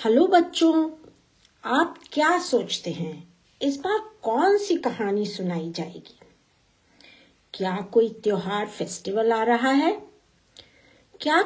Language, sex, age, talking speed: Hindi, female, 50-69, 110 wpm